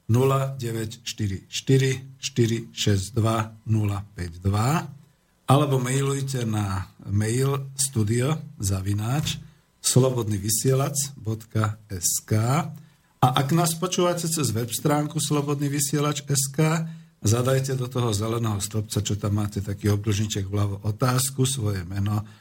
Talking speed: 85 wpm